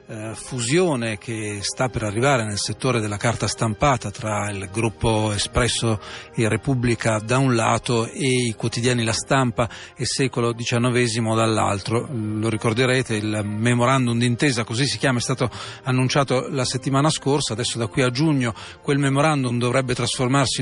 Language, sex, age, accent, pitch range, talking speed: Italian, male, 40-59, native, 115-135 Hz, 150 wpm